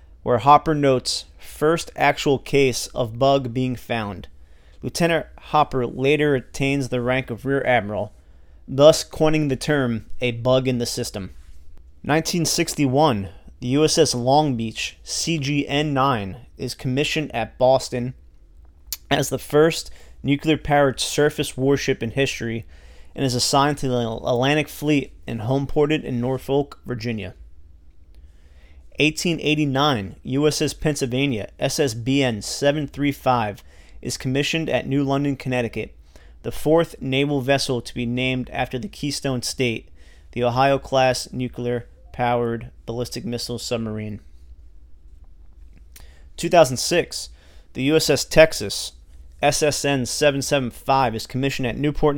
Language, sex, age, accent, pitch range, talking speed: English, male, 30-49, American, 105-140 Hz, 110 wpm